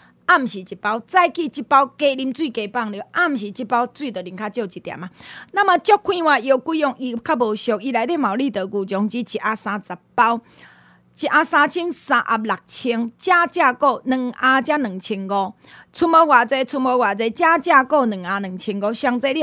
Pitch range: 225-315 Hz